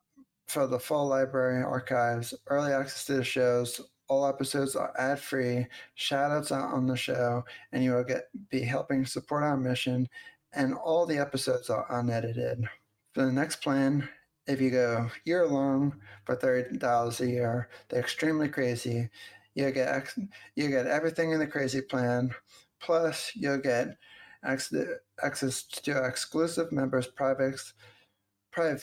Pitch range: 125-145 Hz